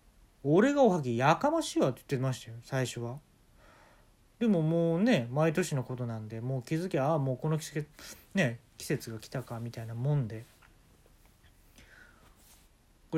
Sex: male